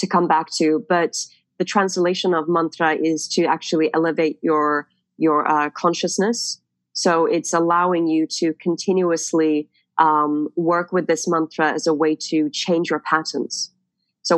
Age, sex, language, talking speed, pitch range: 30-49, female, English, 150 wpm, 155-180 Hz